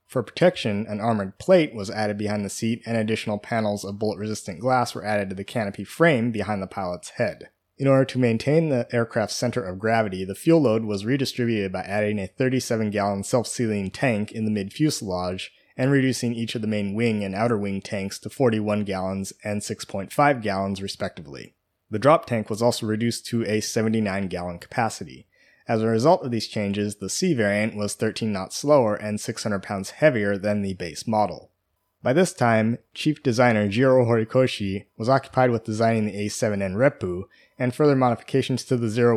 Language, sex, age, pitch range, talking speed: English, male, 20-39, 105-125 Hz, 180 wpm